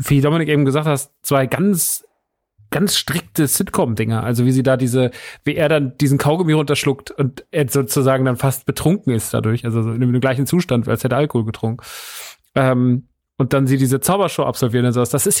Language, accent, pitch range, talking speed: German, German, 125-150 Hz, 190 wpm